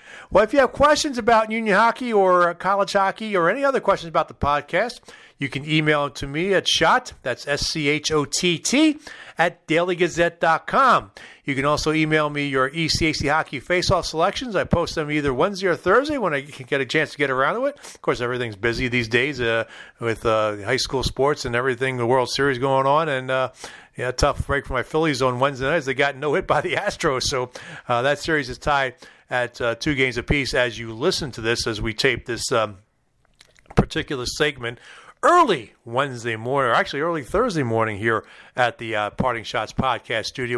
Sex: male